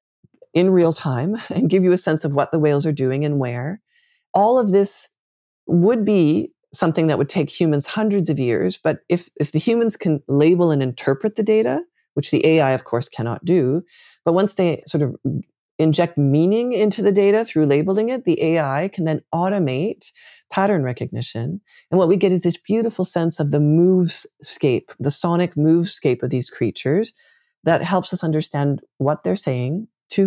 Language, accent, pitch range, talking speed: English, American, 140-195 Hz, 180 wpm